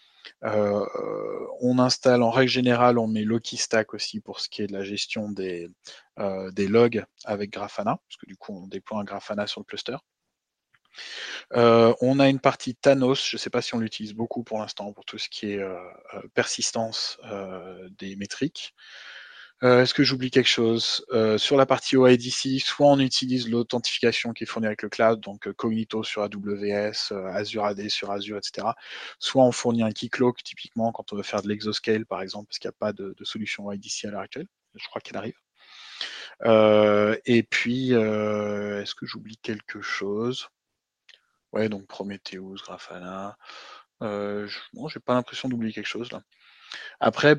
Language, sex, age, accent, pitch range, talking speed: French, male, 20-39, French, 105-125 Hz, 185 wpm